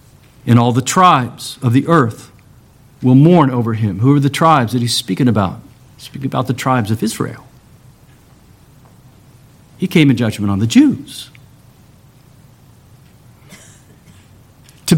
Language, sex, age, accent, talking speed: English, male, 50-69, American, 135 wpm